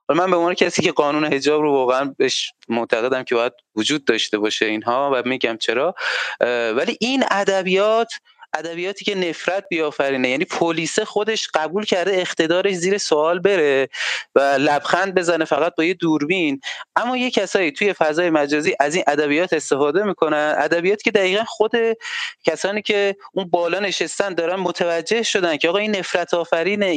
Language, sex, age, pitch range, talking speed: Persian, male, 30-49, 150-200 Hz, 155 wpm